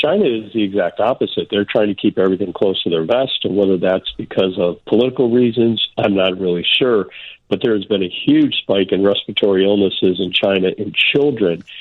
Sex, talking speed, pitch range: male, 200 wpm, 95-125 Hz